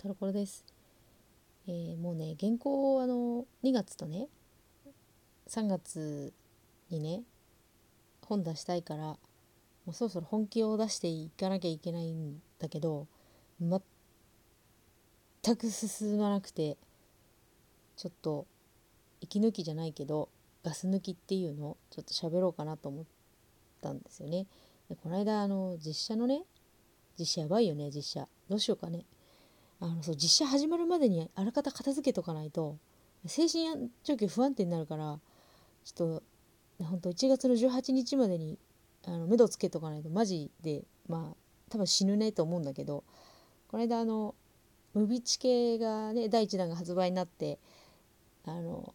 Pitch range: 155-215 Hz